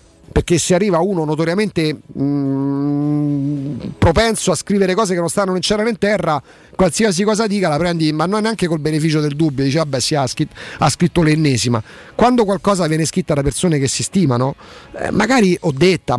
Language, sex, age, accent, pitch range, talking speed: Italian, male, 30-49, native, 135-175 Hz, 180 wpm